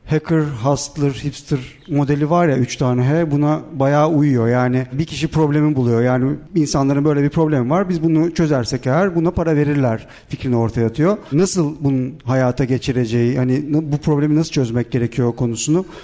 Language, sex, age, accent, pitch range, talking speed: Turkish, male, 50-69, native, 130-160 Hz, 165 wpm